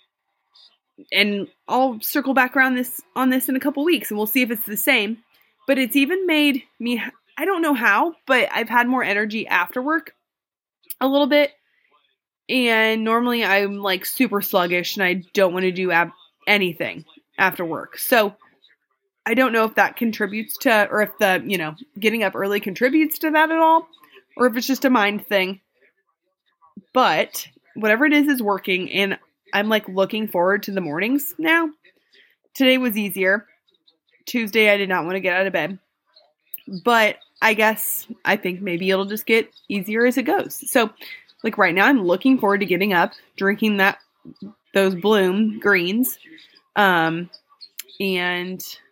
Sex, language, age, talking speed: female, English, 20-39, 170 wpm